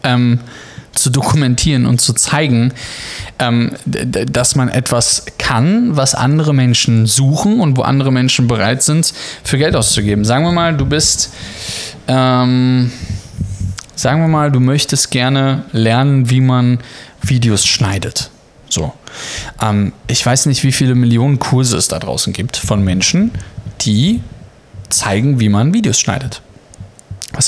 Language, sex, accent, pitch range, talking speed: German, male, German, 115-150 Hz, 140 wpm